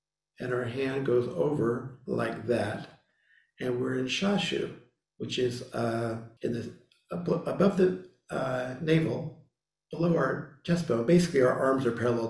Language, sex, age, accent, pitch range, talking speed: English, male, 50-69, American, 115-155 Hz, 140 wpm